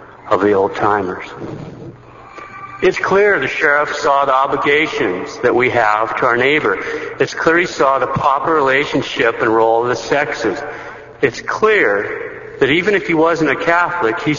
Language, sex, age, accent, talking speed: English, male, 60-79, American, 165 wpm